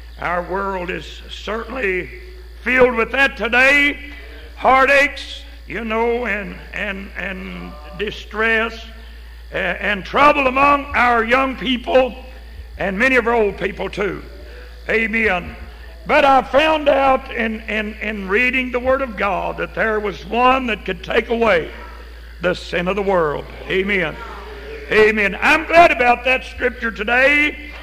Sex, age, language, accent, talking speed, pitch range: male, 60-79, English, American, 135 wpm, 215-270 Hz